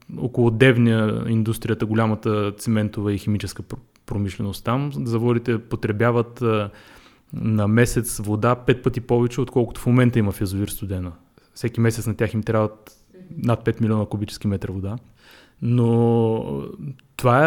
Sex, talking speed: male, 130 wpm